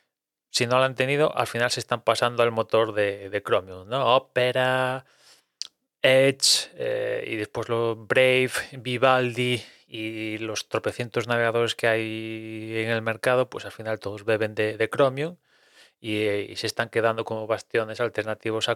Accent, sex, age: Spanish, male, 20-39